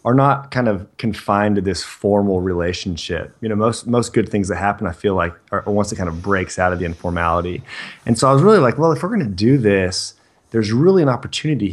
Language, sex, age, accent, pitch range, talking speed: English, male, 30-49, American, 95-120 Hz, 240 wpm